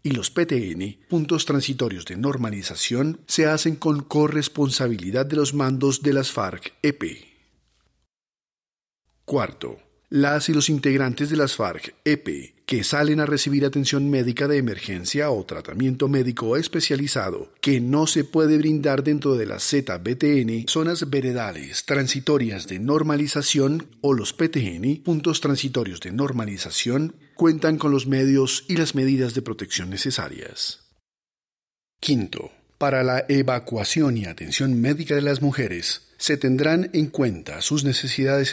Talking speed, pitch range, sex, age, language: 130 wpm, 125-150 Hz, male, 40-59, Spanish